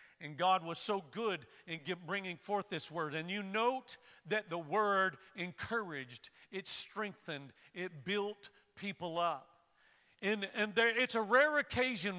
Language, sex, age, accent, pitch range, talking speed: English, male, 50-69, American, 170-220 Hz, 150 wpm